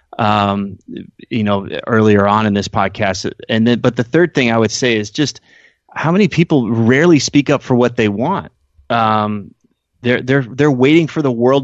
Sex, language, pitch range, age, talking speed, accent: male, English, 105-120 Hz, 30-49, 190 wpm, American